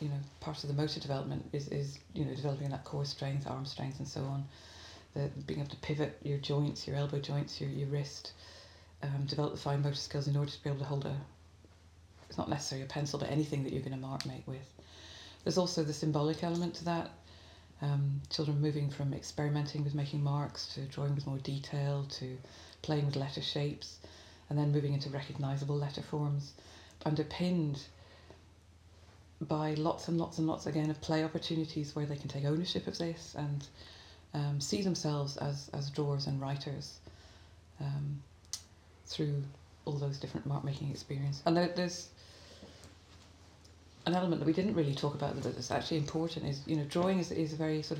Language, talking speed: English, 190 wpm